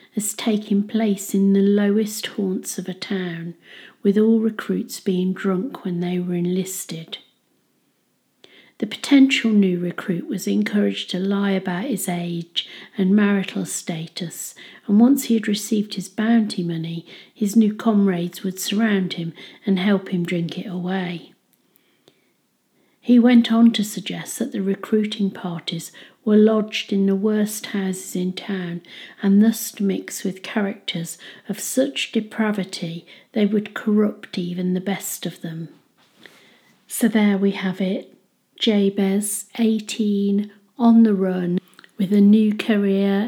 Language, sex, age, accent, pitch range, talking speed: English, female, 50-69, British, 185-215 Hz, 140 wpm